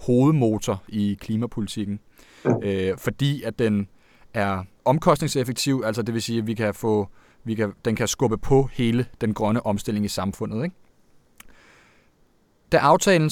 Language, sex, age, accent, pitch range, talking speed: Danish, male, 30-49, native, 110-140 Hz, 145 wpm